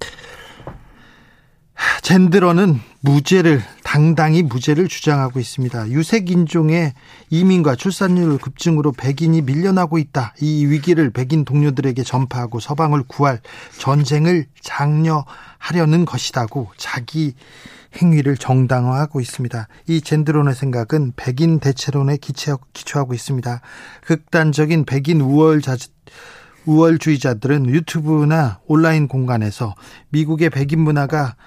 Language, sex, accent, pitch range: Korean, male, native, 130-160 Hz